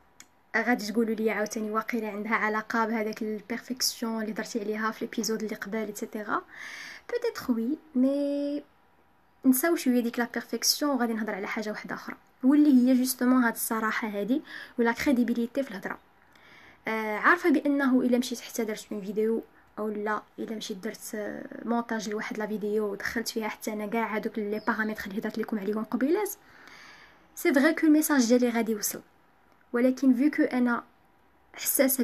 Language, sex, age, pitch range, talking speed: Arabic, female, 20-39, 220-270 Hz, 155 wpm